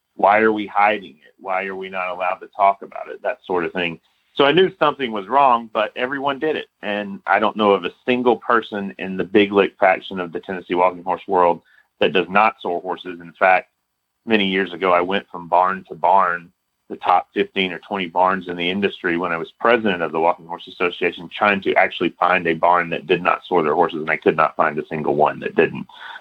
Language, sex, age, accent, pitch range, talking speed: English, male, 40-59, American, 90-105 Hz, 235 wpm